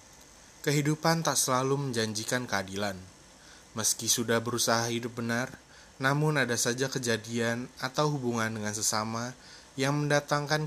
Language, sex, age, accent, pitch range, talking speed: Indonesian, male, 20-39, native, 110-135 Hz, 110 wpm